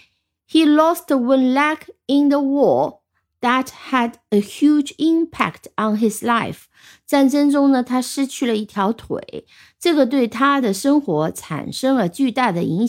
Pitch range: 195-285 Hz